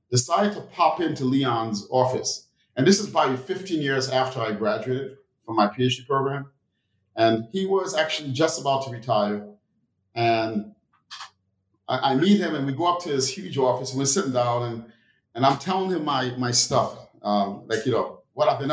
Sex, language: male, English